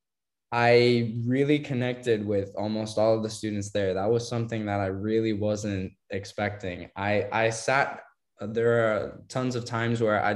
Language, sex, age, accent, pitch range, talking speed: English, male, 10-29, American, 105-115 Hz, 160 wpm